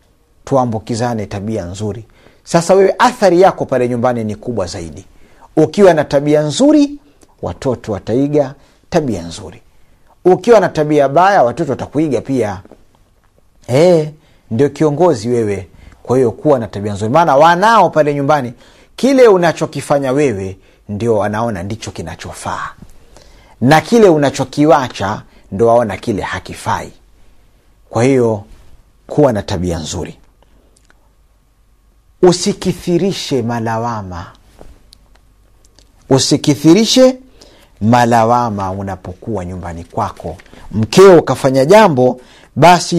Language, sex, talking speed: Swahili, male, 100 wpm